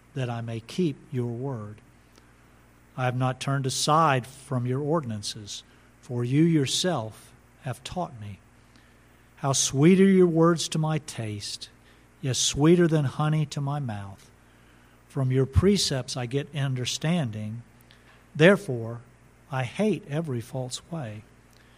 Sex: male